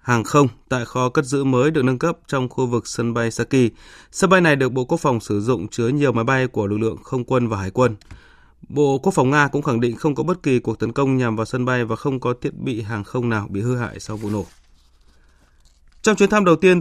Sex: male